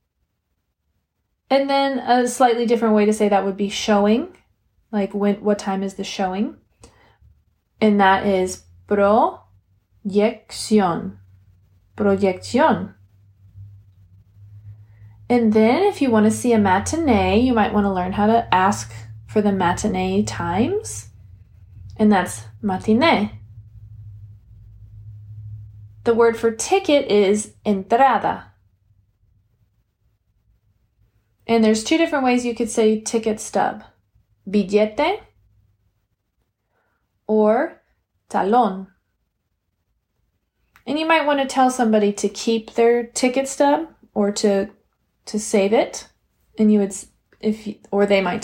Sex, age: female, 20-39